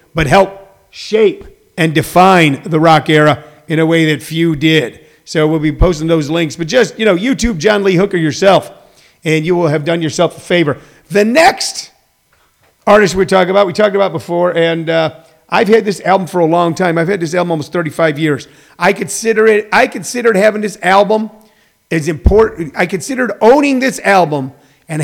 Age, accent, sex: 50-69, American, male